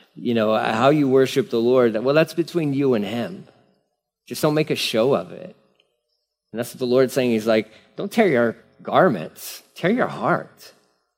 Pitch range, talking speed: 120-170 Hz, 190 wpm